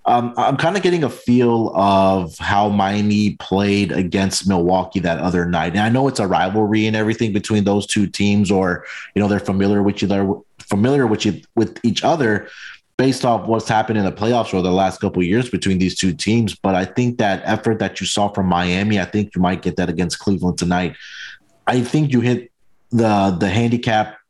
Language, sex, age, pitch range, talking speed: English, male, 20-39, 95-110 Hz, 210 wpm